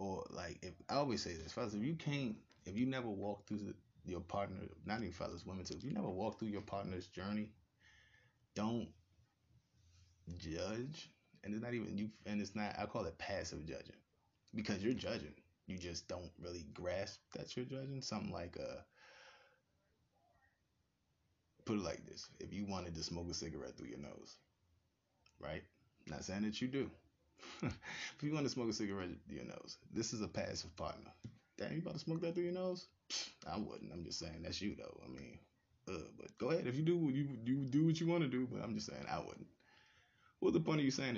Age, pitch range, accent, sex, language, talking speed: 20-39, 95-130 Hz, American, male, English, 205 wpm